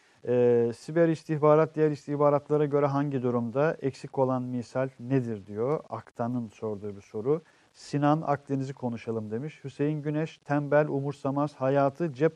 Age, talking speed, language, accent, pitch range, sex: 50-69, 130 wpm, Turkish, native, 130-175 Hz, male